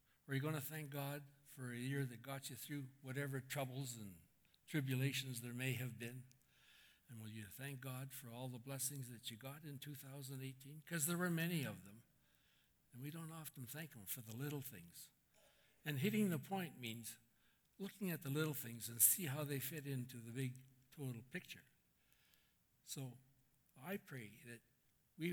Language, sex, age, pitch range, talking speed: English, male, 60-79, 115-140 Hz, 180 wpm